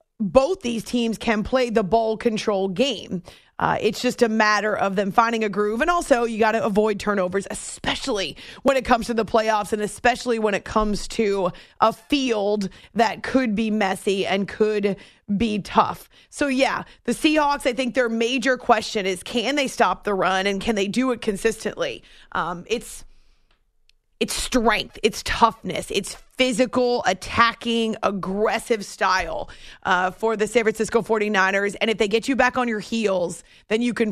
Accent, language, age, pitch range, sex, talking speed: American, English, 30-49, 205-240 Hz, female, 175 wpm